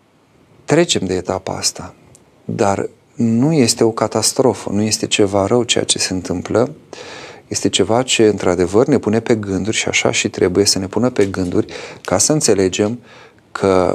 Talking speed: 165 wpm